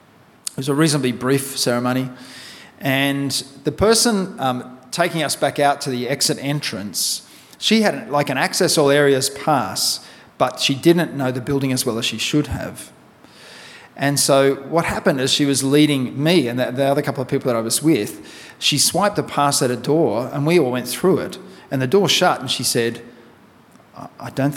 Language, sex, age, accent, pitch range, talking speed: English, male, 40-59, Australian, 130-165 Hz, 195 wpm